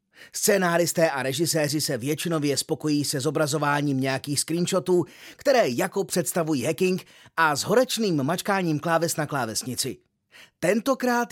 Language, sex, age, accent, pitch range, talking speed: Czech, male, 30-49, native, 145-200 Hz, 115 wpm